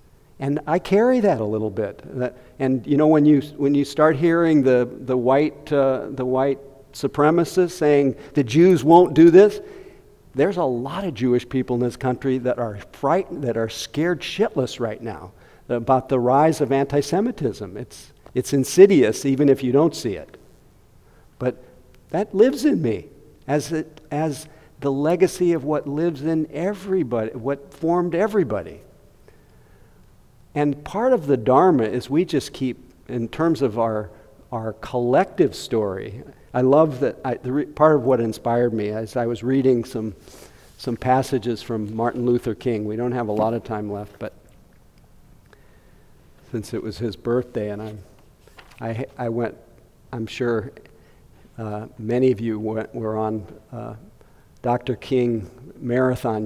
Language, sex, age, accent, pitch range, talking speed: English, male, 50-69, American, 115-155 Hz, 160 wpm